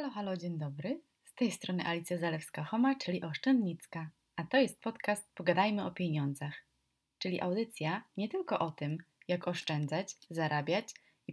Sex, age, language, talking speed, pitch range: female, 20-39, Polish, 150 wpm, 180-245 Hz